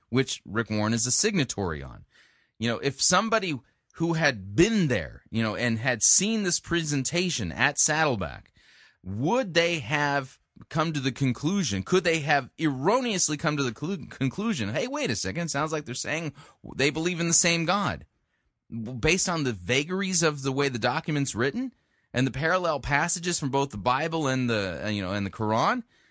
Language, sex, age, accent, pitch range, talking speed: English, male, 30-49, American, 120-175 Hz, 180 wpm